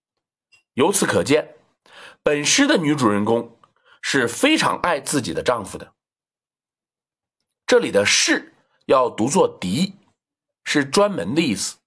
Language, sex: Chinese, male